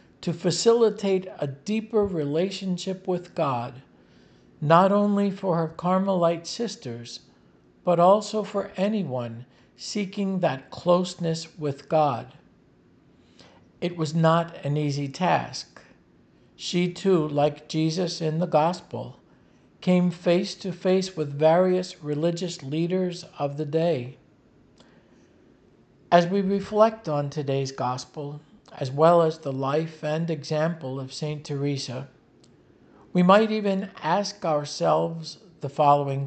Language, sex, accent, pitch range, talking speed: English, male, American, 140-185 Hz, 115 wpm